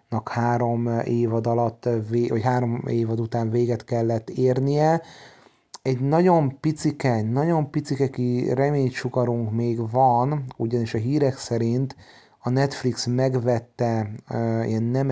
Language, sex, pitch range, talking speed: Hungarian, male, 115-125 Hz, 125 wpm